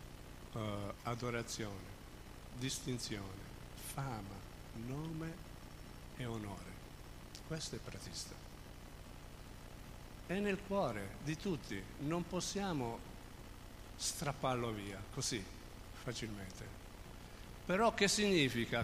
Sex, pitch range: male, 115-160 Hz